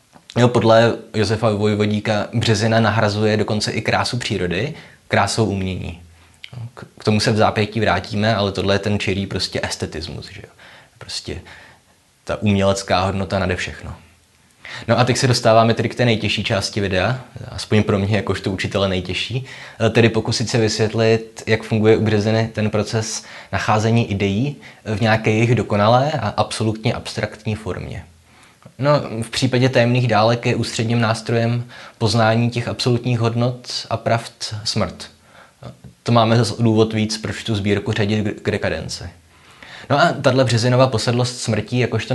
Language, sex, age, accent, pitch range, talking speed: Czech, male, 20-39, native, 100-120 Hz, 145 wpm